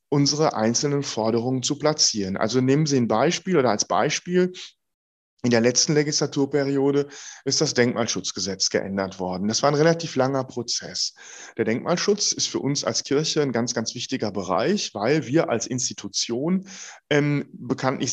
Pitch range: 110-150 Hz